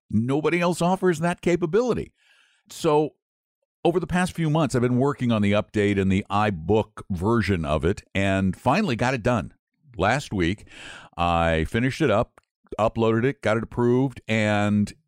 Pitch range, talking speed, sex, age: 85-125 Hz, 160 wpm, male, 50-69